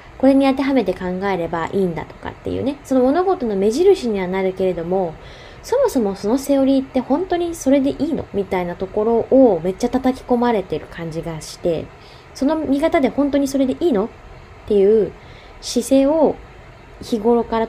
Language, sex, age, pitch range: Japanese, female, 20-39, 185-250 Hz